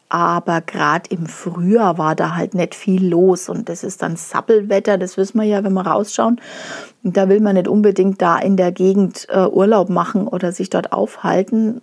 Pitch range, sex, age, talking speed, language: 180-215 Hz, female, 40-59, 190 wpm, German